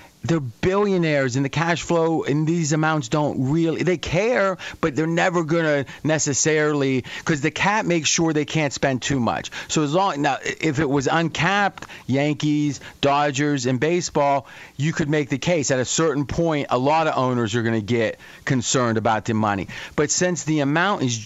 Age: 40-59